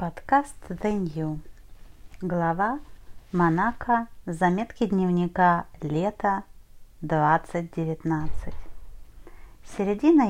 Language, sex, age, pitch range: Russian, female, 30-49, 160-205 Hz